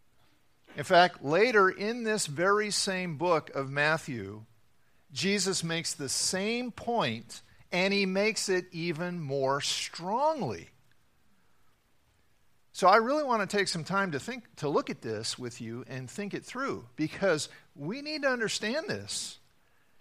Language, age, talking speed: English, 50-69, 145 wpm